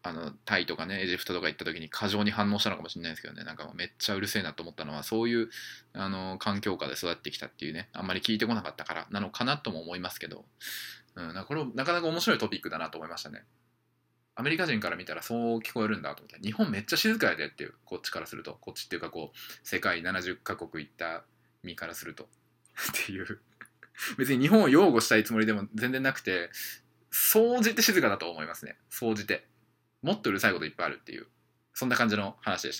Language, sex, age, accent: Japanese, male, 20-39, native